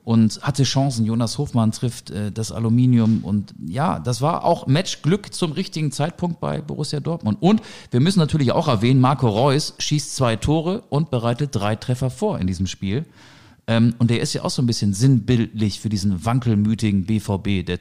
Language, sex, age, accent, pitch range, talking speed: German, male, 40-59, German, 110-150 Hz, 180 wpm